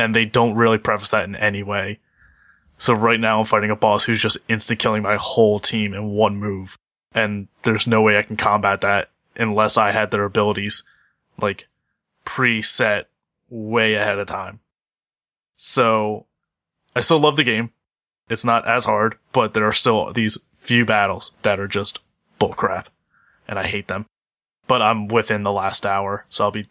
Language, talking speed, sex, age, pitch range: English, 175 wpm, male, 20-39, 105-115 Hz